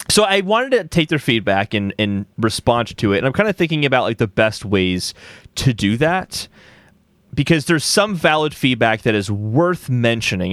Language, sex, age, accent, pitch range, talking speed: English, male, 30-49, American, 105-150 Hz, 195 wpm